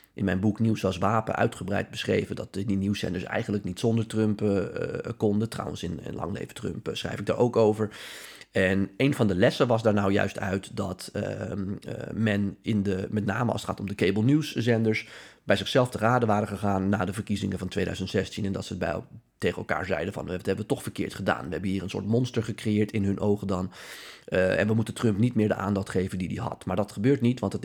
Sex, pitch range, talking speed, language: male, 95-110 Hz, 240 wpm, Dutch